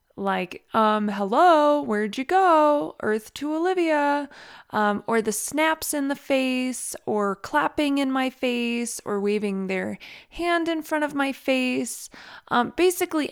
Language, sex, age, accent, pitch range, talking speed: English, female, 20-39, American, 190-235 Hz, 145 wpm